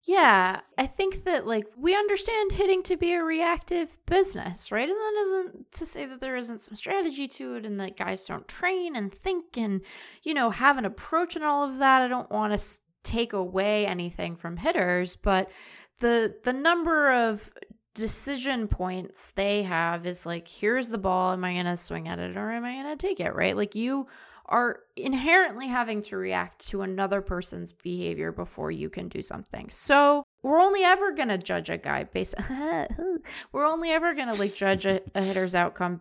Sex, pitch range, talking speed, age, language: female, 185-290 Hz, 195 wpm, 20-39, English